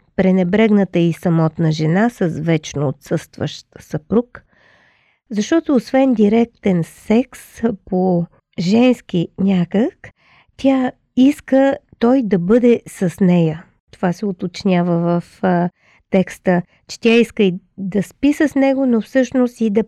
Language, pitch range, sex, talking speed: Bulgarian, 175-235 Hz, female, 120 wpm